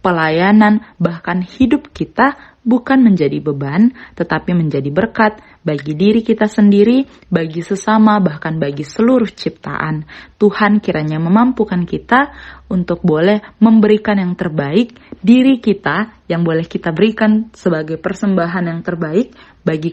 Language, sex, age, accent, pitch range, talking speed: Indonesian, female, 20-39, native, 160-210 Hz, 120 wpm